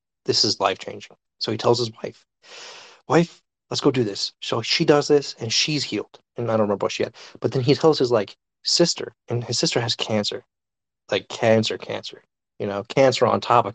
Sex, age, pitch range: male, 30-49, 110-155 Hz